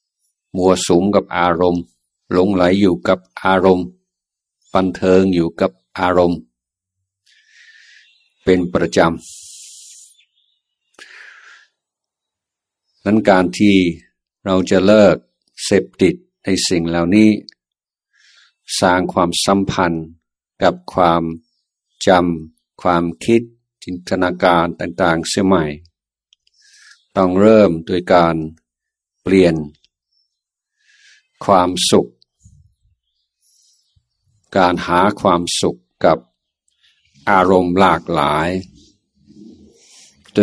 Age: 60-79